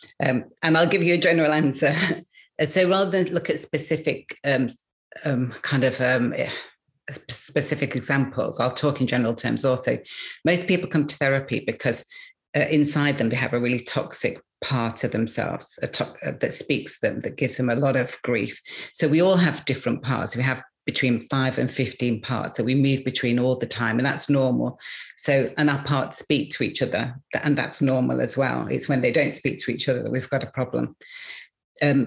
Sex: female